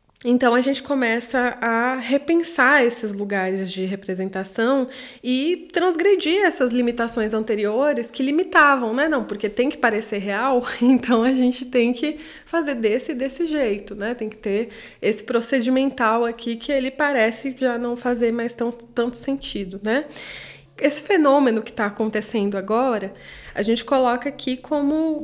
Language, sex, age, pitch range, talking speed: Portuguese, female, 20-39, 205-255 Hz, 145 wpm